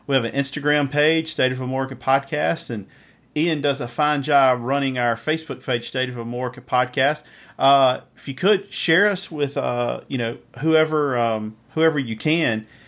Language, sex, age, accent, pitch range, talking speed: English, male, 40-59, American, 110-135 Hz, 175 wpm